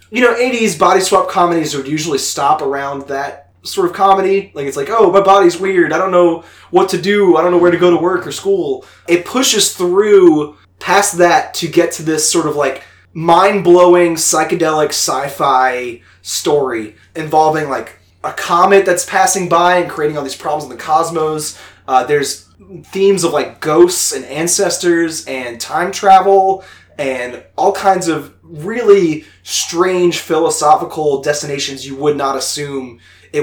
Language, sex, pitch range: English, male, 145-190 Hz